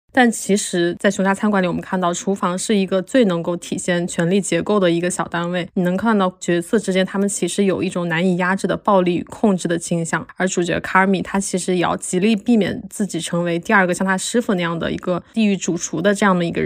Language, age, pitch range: Chinese, 20-39, 175-205 Hz